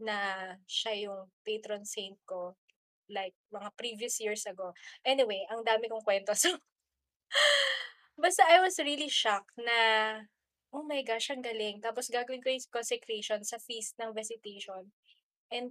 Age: 20-39